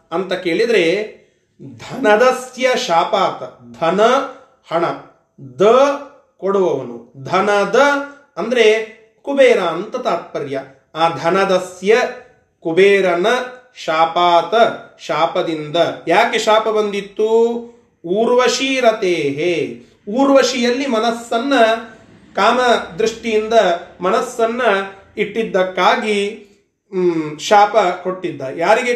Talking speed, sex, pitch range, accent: 65 wpm, male, 175-245 Hz, native